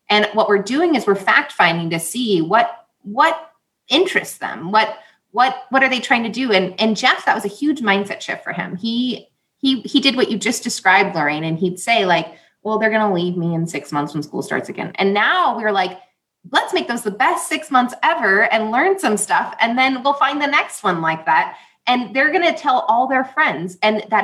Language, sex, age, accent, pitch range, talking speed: English, female, 20-39, American, 185-240 Hz, 235 wpm